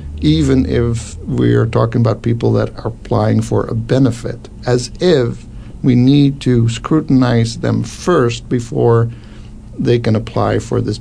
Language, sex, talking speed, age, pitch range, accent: English, male, 140 wpm, 60-79, 105-125 Hz, American